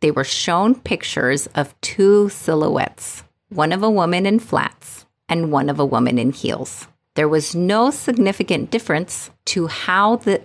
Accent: American